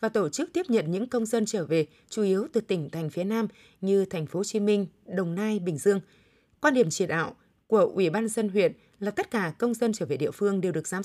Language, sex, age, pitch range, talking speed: Vietnamese, female, 20-39, 190-235 Hz, 260 wpm